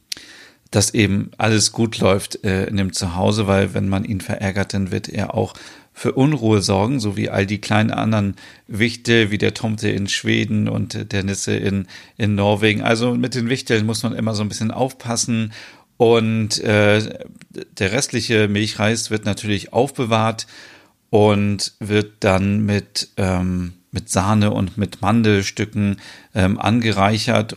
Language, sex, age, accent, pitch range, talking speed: German, male, 40-59, German, 100-110 Hz, 150 wpm